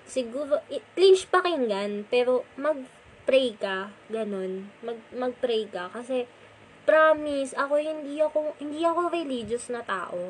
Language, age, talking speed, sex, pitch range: Filipino, 20-39, 120 wpm, female, 210-270 Hz